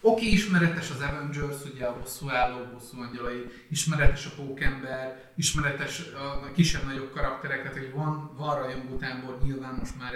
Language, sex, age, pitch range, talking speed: Hungarian, male, 30-49, 130-160 Hz, 135 wpm